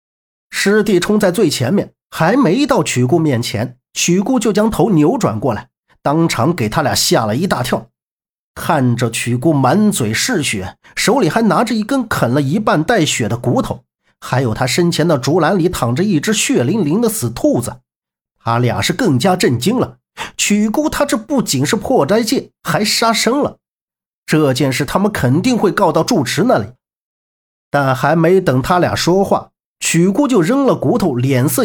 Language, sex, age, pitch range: Chinese, male, 50-69, 130-215 Hz